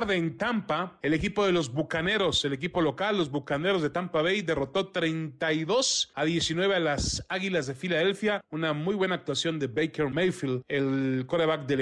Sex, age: male, 40-59